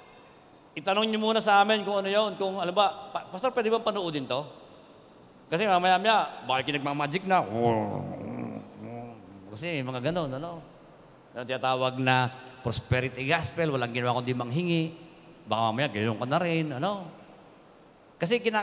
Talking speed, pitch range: 140 wpm, 145-210 Hz